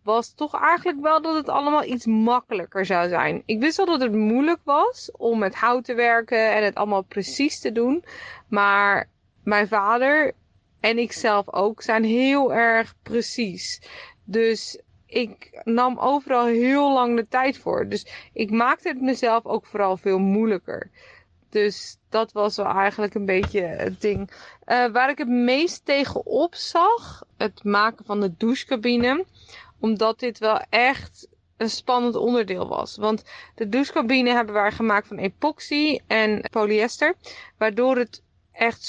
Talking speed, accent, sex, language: 155 wpm, Dutch, female, Dutch